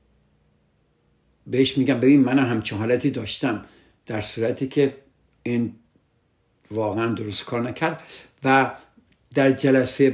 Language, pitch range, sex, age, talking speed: Persian, 110-140 Hz, male, 60-79, 110 wpm